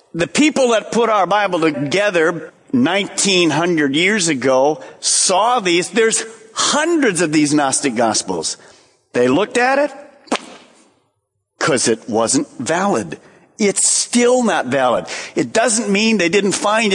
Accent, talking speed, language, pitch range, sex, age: American, 130 wpm, English, 155-240 Hz, male, 50-69